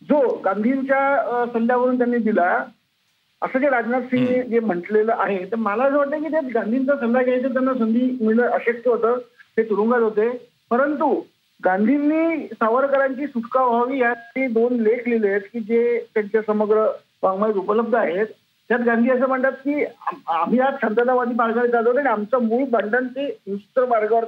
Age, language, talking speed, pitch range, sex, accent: 50-69, Marathi, 155 wpm, 225-275 Hz, male, native